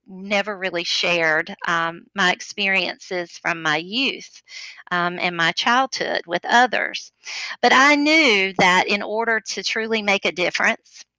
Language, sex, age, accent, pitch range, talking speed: English, female, 40-59, American, 185-225 Hz, 140 wpm